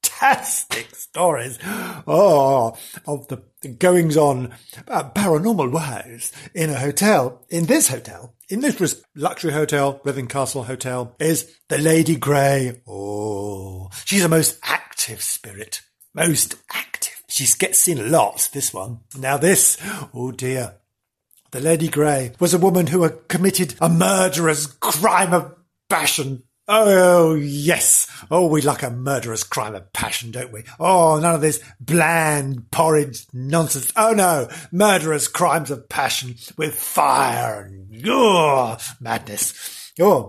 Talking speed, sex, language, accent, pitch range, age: 130 wpm, male, English, British, 125-170 Hz, 50-69